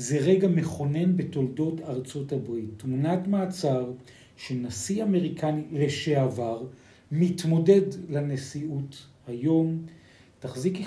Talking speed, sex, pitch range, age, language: 85 wpm, male, 125-180 Hz, 50-69, Hebrew